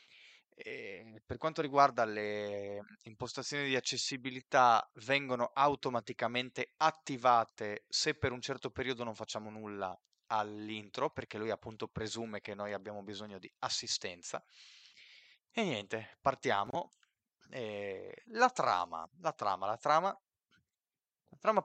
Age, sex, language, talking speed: 30-49, male, Italian, 115 wpm